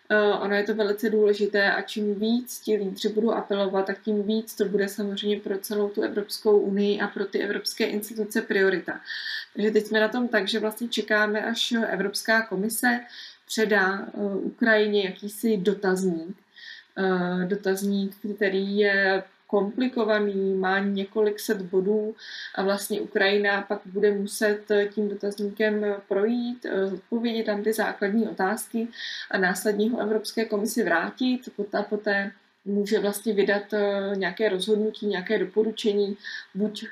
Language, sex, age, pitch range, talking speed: Czech, female, 20-39, 195-215 Hz, 135 wpm